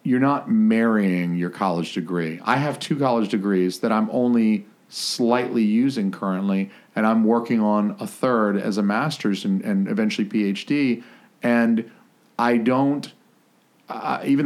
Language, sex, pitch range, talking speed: English, male, 100-140 Hz, 145 wpm